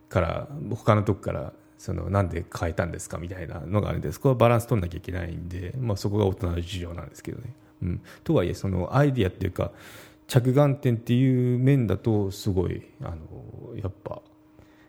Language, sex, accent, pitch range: Japanese, male, native, 90-125 Hz